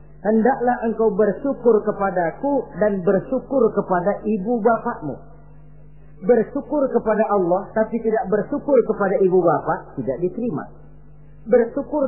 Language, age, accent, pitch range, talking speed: Indonesian, 40-59, native, 155-225 Hz, 105 wpm